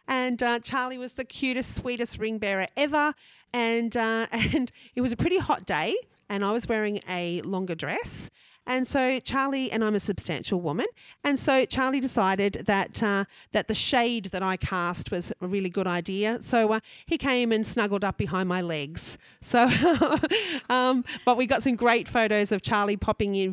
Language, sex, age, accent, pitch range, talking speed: English, female, 40-59, Australian, 180-250 Hz, 190 wpm